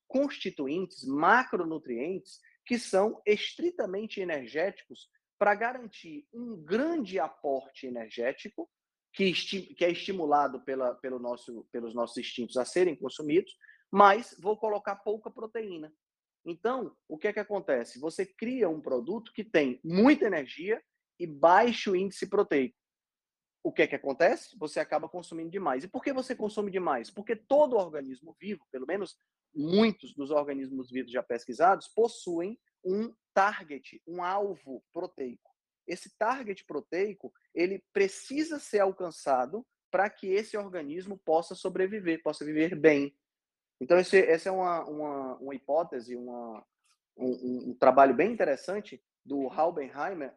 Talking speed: 135 wpm